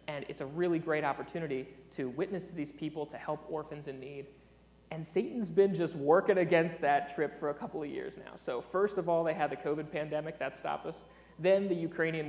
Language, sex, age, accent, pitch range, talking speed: English, male, 30-49, American, 145-185 Hz, 220 wpm